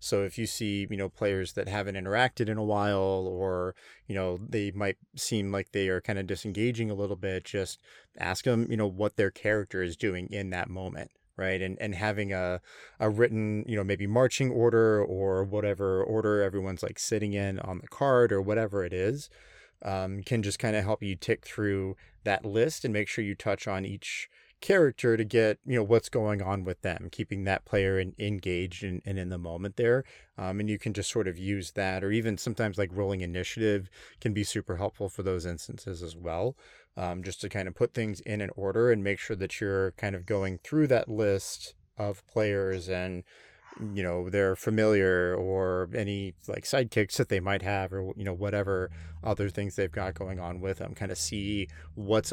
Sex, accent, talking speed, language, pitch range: male, American, 210 wpm, English, 95-105 Hz